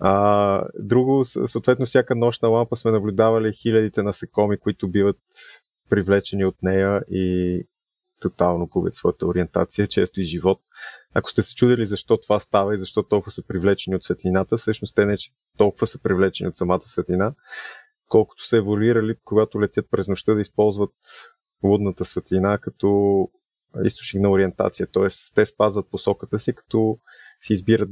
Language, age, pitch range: Bulgarian, 20-39, 95-115 Hz